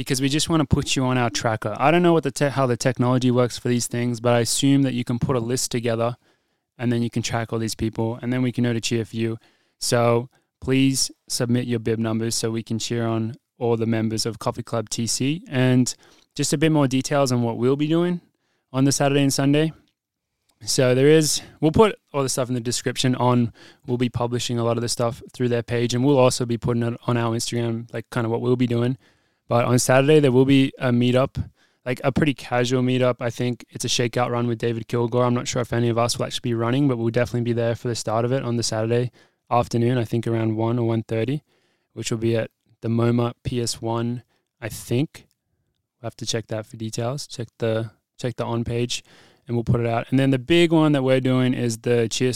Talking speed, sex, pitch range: 245 wpm, male, 115-130 Hz